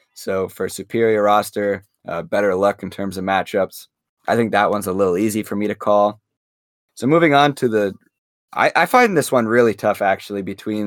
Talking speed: 205 wpm